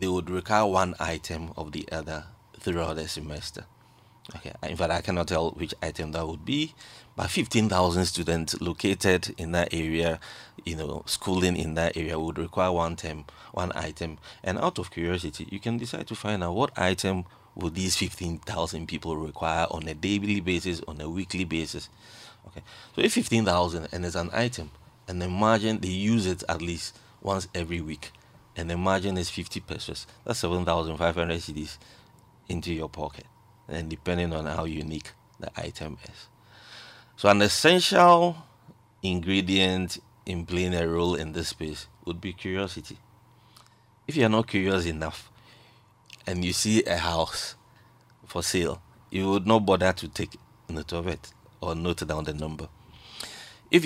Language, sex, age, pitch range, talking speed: English, male, 30-49, 80-105 Hz, 160 wpm